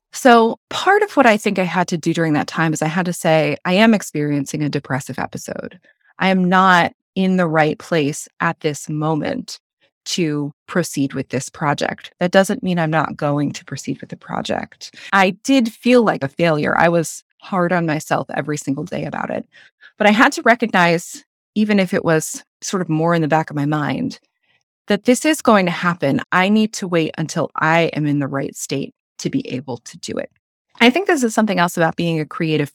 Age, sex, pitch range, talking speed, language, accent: 20-39, female, 155-210 Hz, 215 wpm, English, American